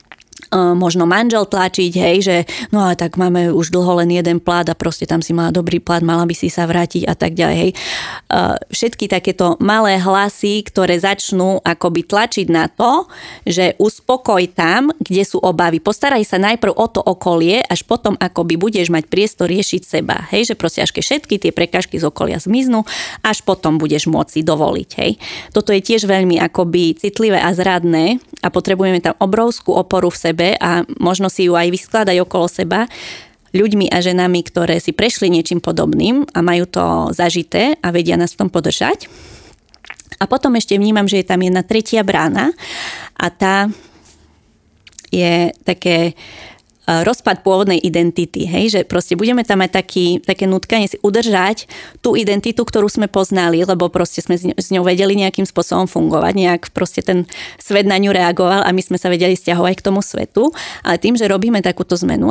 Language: Slovak